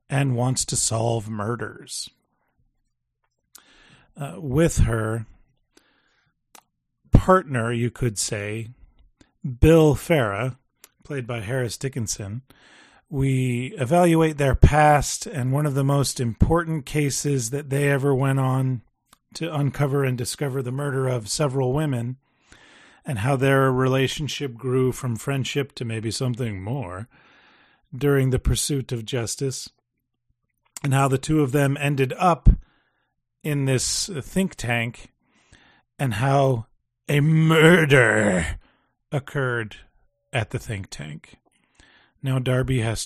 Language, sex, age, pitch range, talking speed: English, male, 40-59, 120-145 Hz, 115 wpm